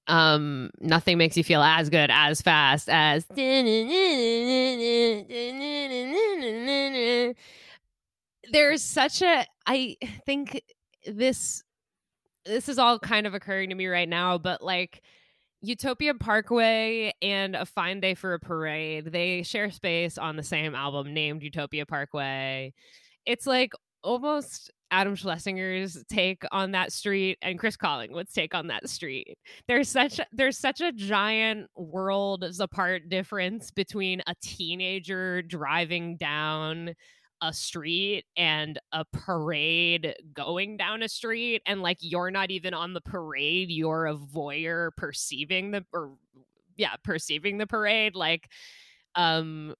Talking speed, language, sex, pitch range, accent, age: 130 wpm, English, female, 165-230 Hz, American, 20-39